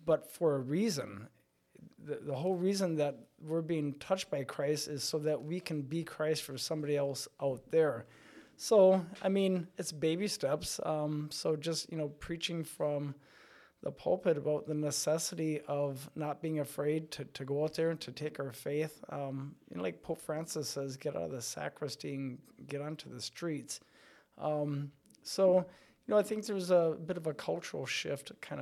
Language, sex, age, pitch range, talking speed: English, male, 20-39, 145-175 Hz, 185 wpm